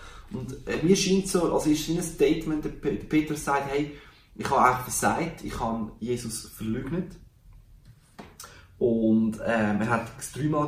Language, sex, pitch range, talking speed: German, male, 110-150 Hz, 165 wpm